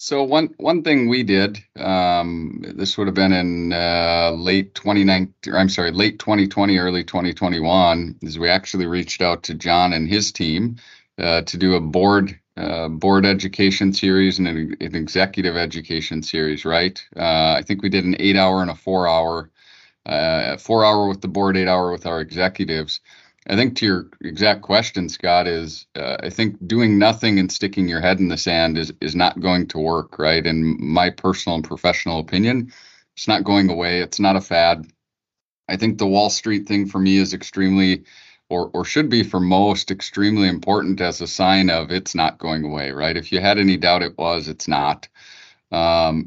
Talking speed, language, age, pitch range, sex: 190 wpm, English, 40-59, 85-100 Hz, male